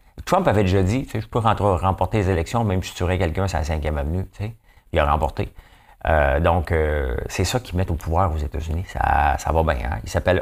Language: English